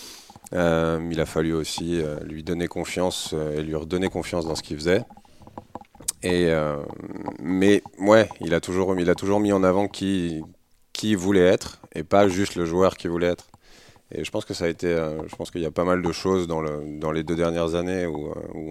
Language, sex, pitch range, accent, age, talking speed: French, male, 80-95 Hz, French, 30-49, 220 wpm